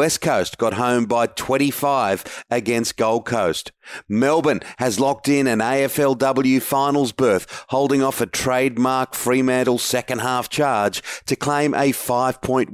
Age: 40-59